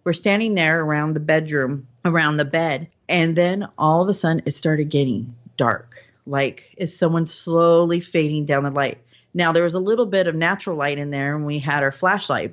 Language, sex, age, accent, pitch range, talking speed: English, female, 40-59, American, 150-180 Hz, 205 wpm